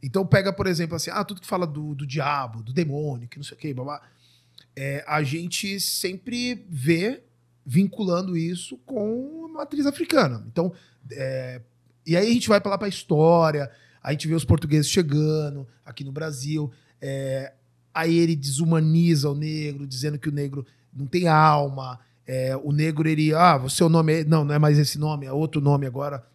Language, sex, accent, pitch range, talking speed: Portuguese, male, Brazilian, 135-185 Hz, 190 wpm